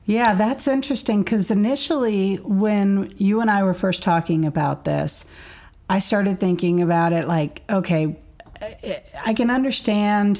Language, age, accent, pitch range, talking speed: English, 40-59, American, 165-195 Hz, 140 wpm